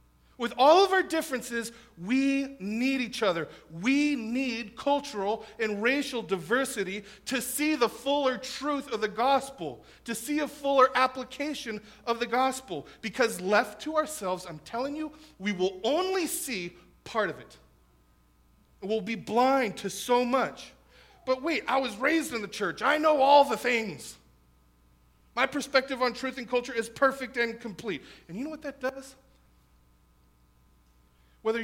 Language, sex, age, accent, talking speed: English, male, 40-59, American, 155 wpm